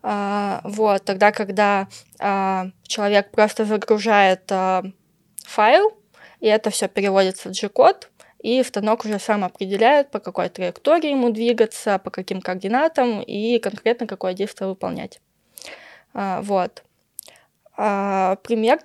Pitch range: 195-235 Hz